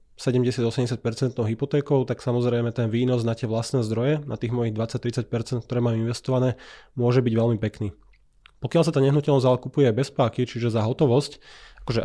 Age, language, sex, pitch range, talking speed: 20-39, Slovak, male, 115-130 Hz, 160 wpm